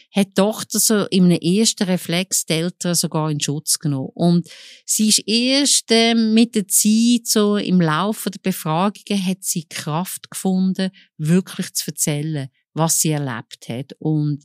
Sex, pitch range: female, 160-205 Hz